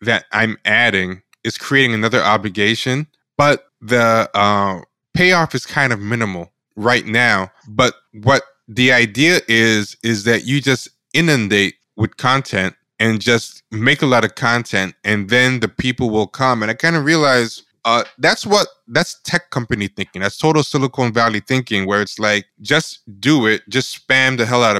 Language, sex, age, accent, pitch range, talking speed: English, male, 20-39, American, 105-130 Hz, 170 wpm